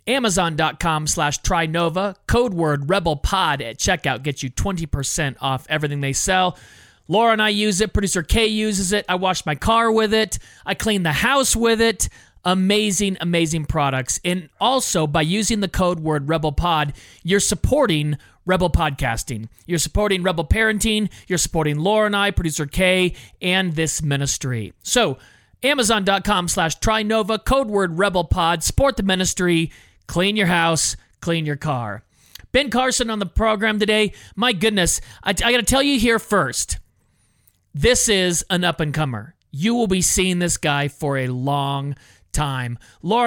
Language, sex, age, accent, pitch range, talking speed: English, male, 40-59, American, 145-210 Hz, 155 wpm